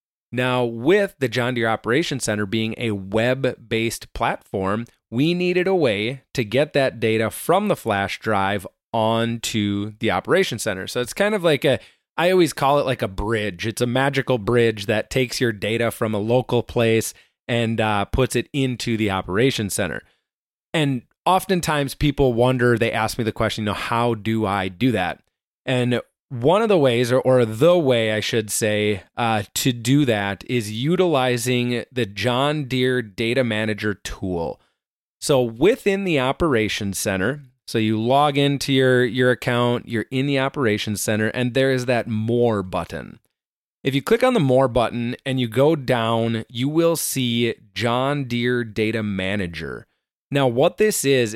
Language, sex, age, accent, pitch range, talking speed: English, male, 30-49, American, 110-135 Hz, 170 wpm